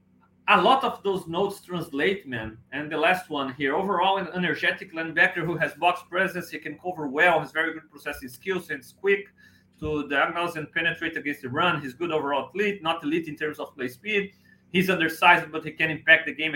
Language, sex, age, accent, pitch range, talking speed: English, male, 40-59, Brazilian, 150-195 Hz, 210 wpm